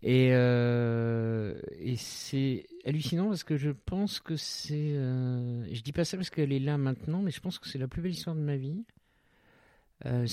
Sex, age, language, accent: male, 50-69, French, French